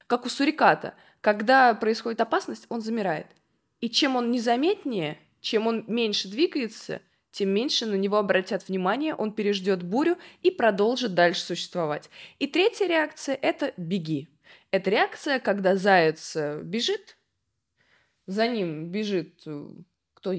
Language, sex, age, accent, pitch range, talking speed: Russian, female, 20-39, native, 185-255 Hz, 125 wpm